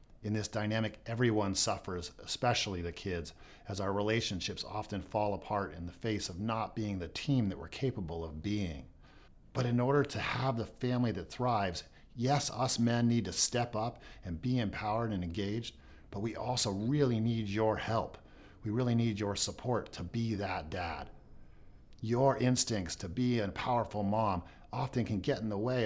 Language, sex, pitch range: English, male, 95-120 Hz